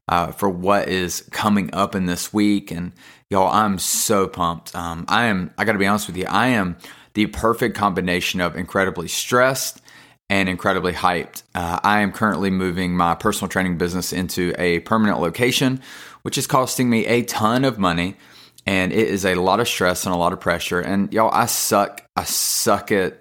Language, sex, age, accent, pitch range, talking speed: English, male, 30-49, American, 90-105 Hz, 190 wpm